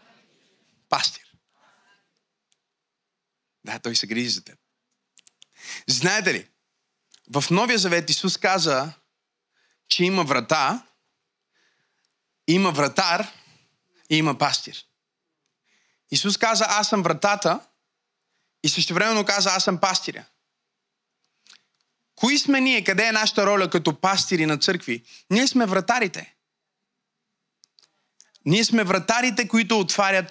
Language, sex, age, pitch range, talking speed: Bulgarian, male, 30-49, 160-220 Hz, 100 wpm